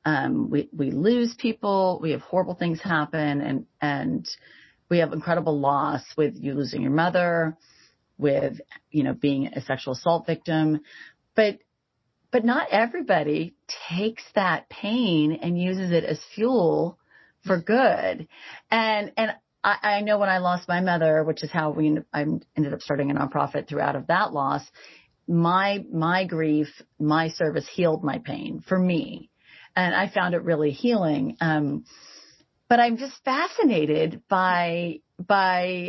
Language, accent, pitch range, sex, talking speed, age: English, American, 155-205 Hz, female, 150 wpm, 30-49